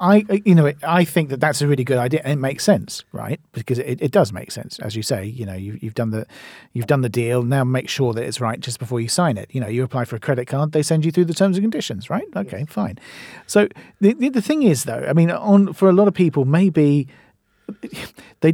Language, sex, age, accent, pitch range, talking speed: English, male, 40-59, British, 120-175 Hz, 270 wpm